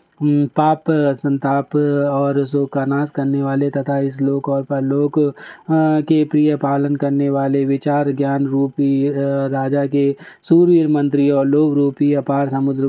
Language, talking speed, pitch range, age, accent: Hindi, 135 wpm, 140-160 Hz, 20-39, native